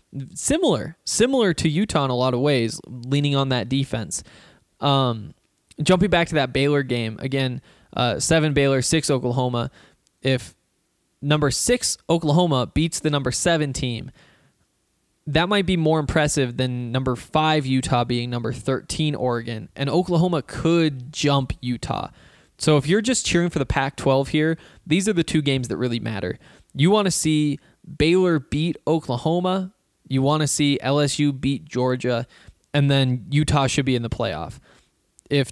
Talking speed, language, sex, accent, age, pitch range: 155 wpm, English, male, American, 20-39, 125-160 Hz